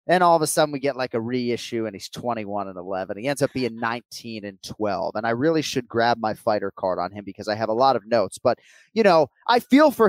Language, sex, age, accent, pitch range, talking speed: English, male, 30-49, American, 120-160 Hz, 270 wpm